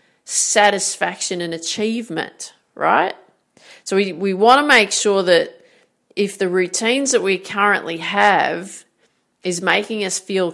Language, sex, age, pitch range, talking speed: English, female, 40-59, 175-215 Hz, 125 wpm